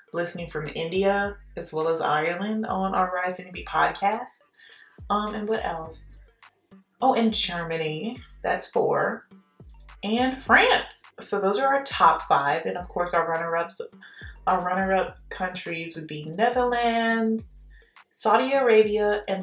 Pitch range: 180-230 Hz